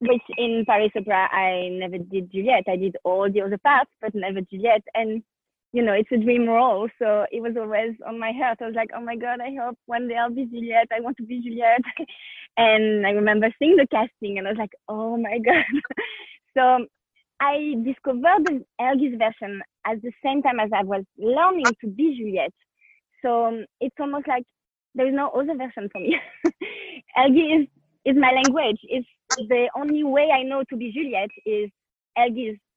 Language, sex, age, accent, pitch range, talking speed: English, female, 20-39, French, 220-275 Hz, 190 wpm